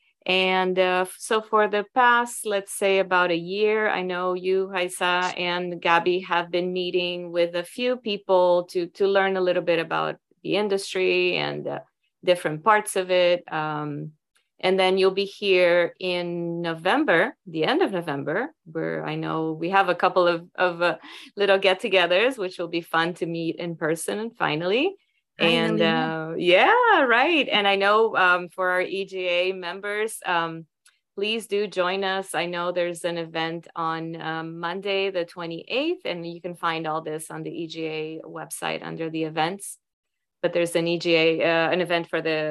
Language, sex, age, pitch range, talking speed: English, female, 30-49, 160-190 Hz, 175 wpm